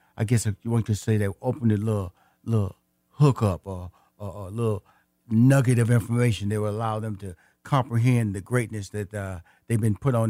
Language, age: English, 40-59